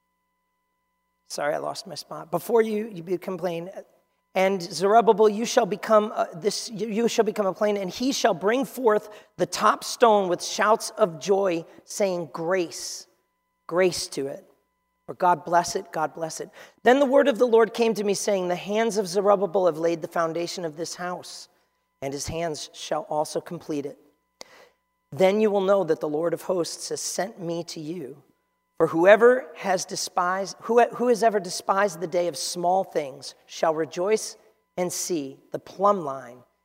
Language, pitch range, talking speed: English, 155-210 Hz, 175 wpm